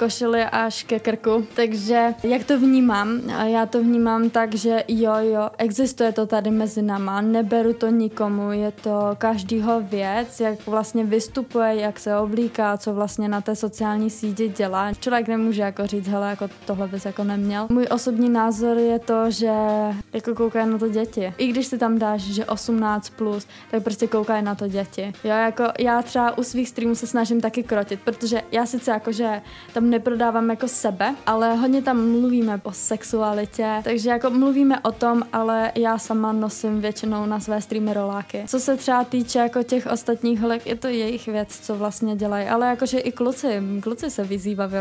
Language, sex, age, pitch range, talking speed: Slovak, female, 20-39, 210-235 Hz, 185 wpm